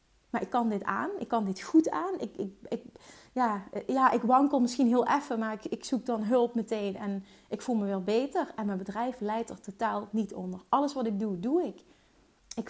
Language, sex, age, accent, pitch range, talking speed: Dutch, female, 30-49, Dutch, 200-240 Hz, 215 wpm